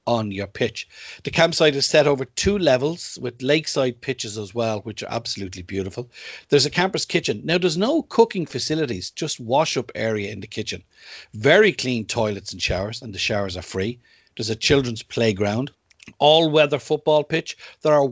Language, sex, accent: English, male, Irish